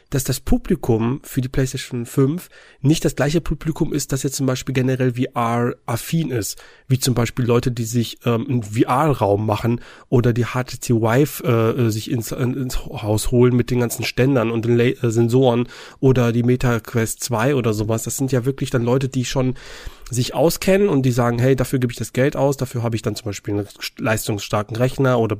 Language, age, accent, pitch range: German, 30-49, German, 120-155 Hz